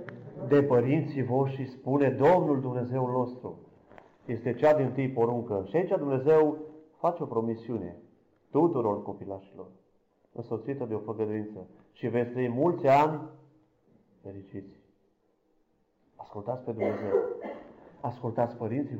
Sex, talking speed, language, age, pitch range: male, 110 wpm, Romanian, 30-49, 115-145 Hz